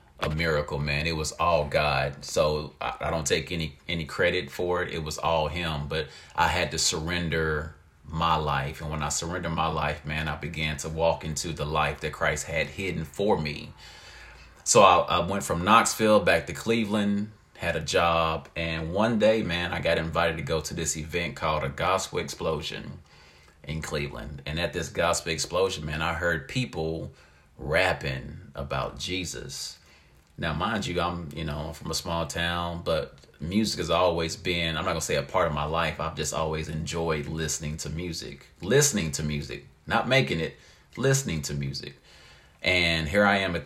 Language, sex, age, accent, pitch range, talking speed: English, male, 30-49, American, 75-85 Hz, 185 wpm